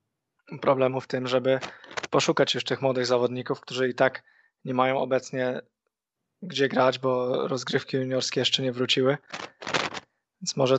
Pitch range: 130-150 Hz